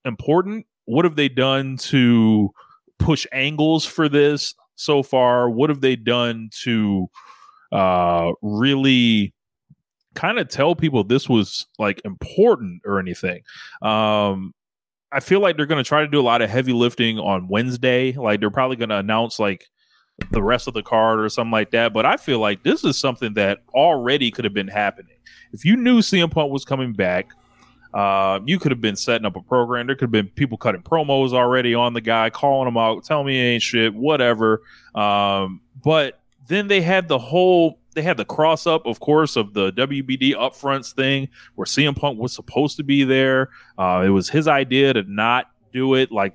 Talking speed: 190 wpm